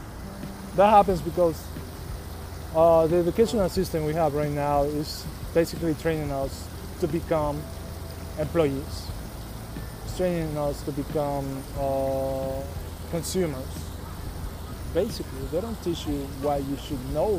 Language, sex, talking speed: English, male, 115 wpm